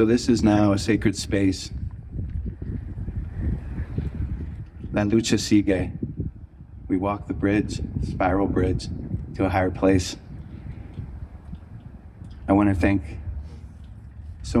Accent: American